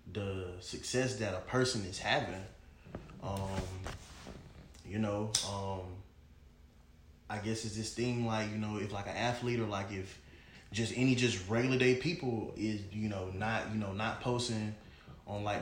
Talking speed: 160 wpm